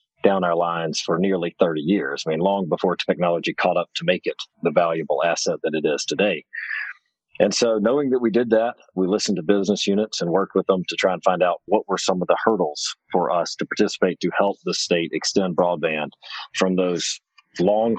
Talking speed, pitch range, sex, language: 215 wpm, 90-105 Hz, male, English